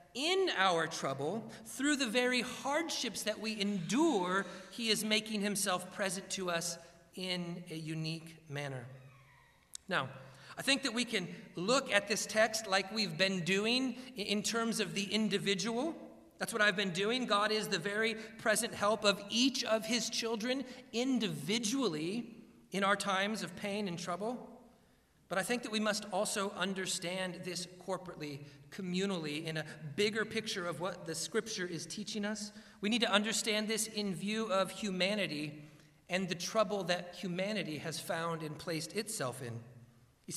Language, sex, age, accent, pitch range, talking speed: English, male, 40-59, American, 175-220 Hz, 160 wpm